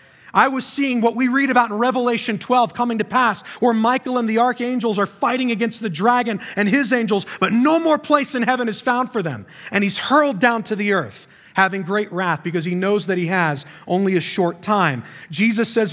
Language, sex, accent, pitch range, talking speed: English, male, American, 180-245 Hz, 220 wpm